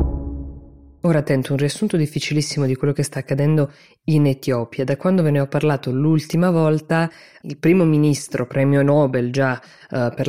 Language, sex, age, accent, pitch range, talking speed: Italian, female, 20-39, native, 135-150 Hz, 165 wpm